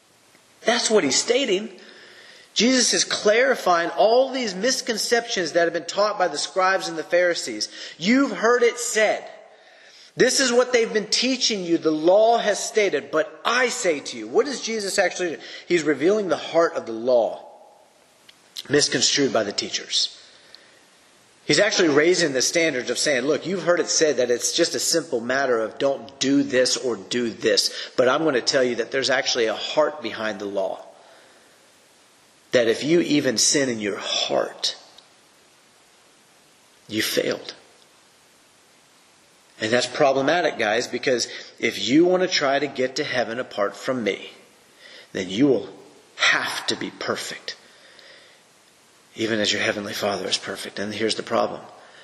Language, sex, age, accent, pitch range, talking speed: English, male, 30-49, American, 145-220 Hz, 160 wpm